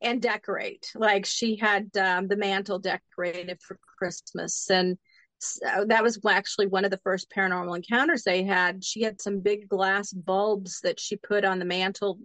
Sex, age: female, 40-59